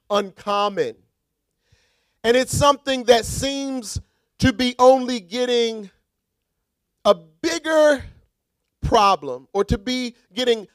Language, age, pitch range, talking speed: English, 40-59, 205-260 Hz, 95 wpm